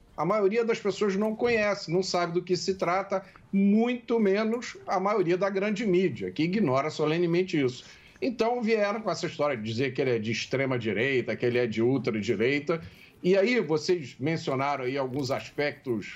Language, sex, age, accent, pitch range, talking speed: Portuguese, male, 50-69, Brazilian, 130-185 Hz, 175 wpm